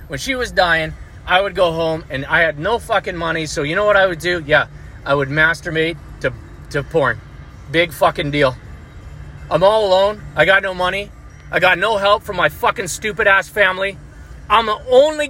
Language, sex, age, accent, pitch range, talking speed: English, male, 30-49, American, 150-215 Hz, 195 wpm